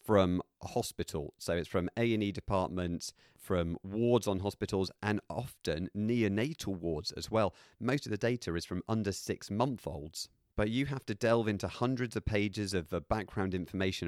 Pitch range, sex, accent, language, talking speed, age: 85-110 Hz, male, British, English, 180 wpm, 40-59